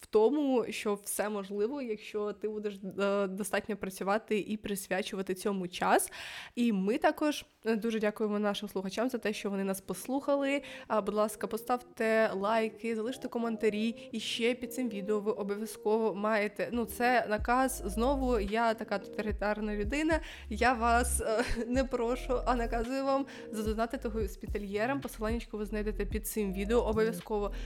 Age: 20-39